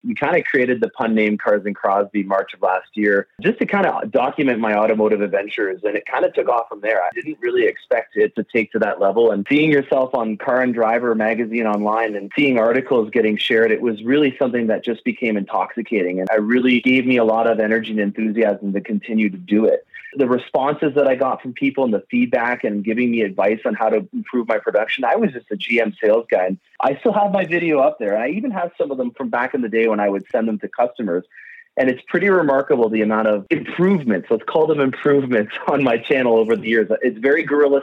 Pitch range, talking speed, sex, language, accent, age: 105-145 Hz, 240 wpm, male, English, American, 30-49